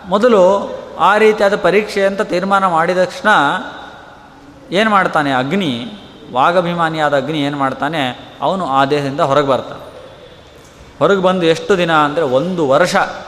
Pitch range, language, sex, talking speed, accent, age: 150-205 Hz, Kannada, male, 120 wpm, native, 30-49